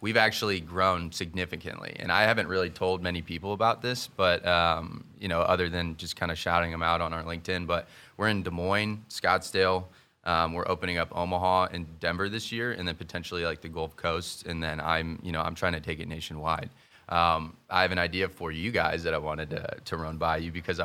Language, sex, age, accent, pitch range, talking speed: English, male, 20-39, American, 85-95 Hz, 225 wpm